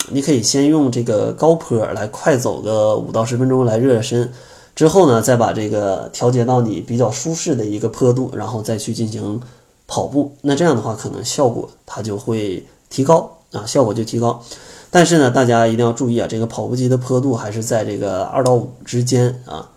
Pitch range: 115-135 Hz